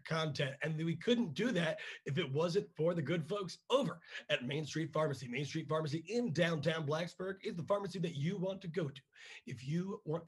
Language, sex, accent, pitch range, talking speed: English, male, American, 145-180 Hz, 210 wpm